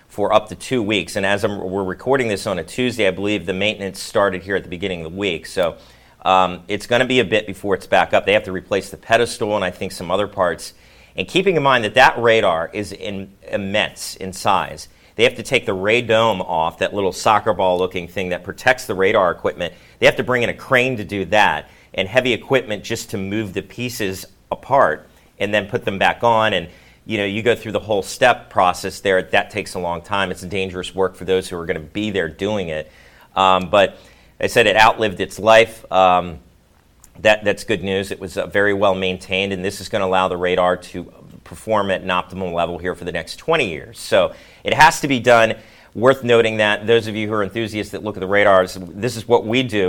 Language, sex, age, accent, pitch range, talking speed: English, male, 40-59, American, 90-110 Hz, 235 wpm